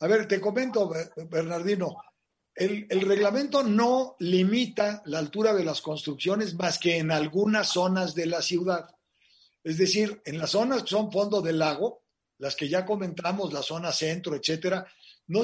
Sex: male